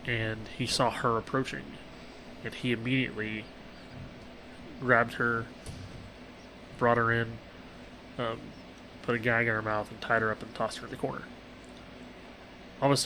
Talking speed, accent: 140 wpm, American